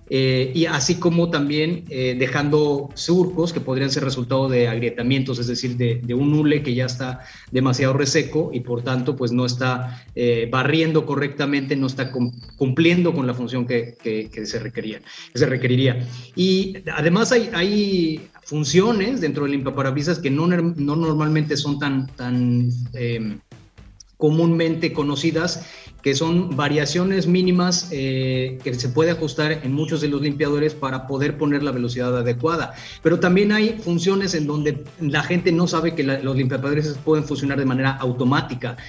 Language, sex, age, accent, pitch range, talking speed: Spanish, male, 30-49, Mexican, 125-160 Hz, 160 wpm